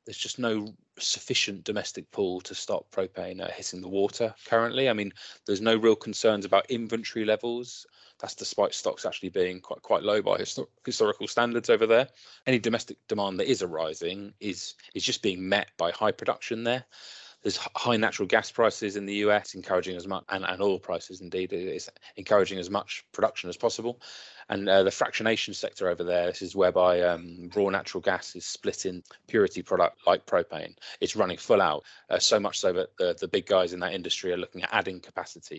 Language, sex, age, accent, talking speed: English, male, 20-39, British, 195 wpm